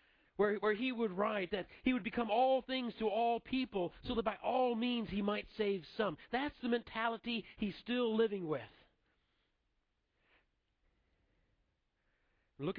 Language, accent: English, American